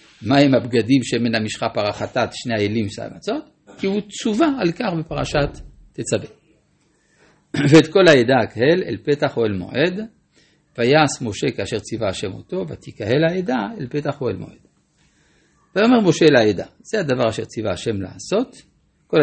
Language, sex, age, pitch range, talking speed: Hebrew, male, 50-69, 115-165 Hz, 155 wpm